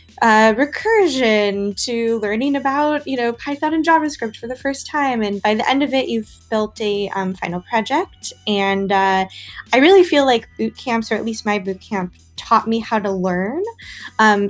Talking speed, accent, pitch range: 190 wpm, American, 185-230 Hz